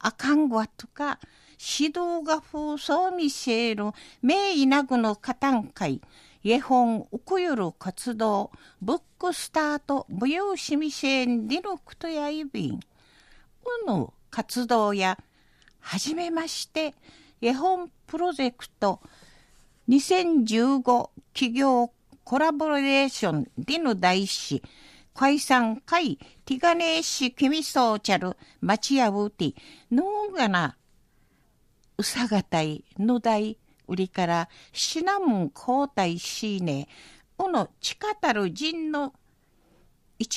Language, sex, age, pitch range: Japanese, female, 50-69, 215-315 Hz